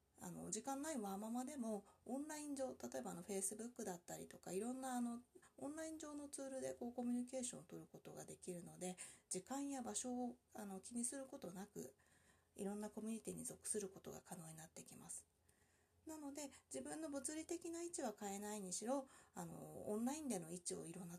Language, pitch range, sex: Japanese, 190-270 Hz, female